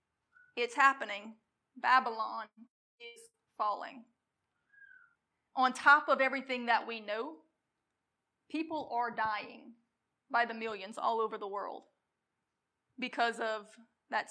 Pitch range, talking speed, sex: 225-260 Hz, 105 wpm, female